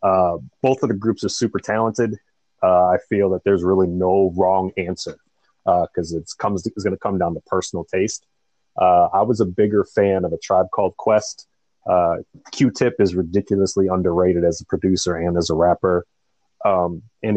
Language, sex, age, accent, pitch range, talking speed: English, male, 30-49, American, 90-105 Hz, 180 wpm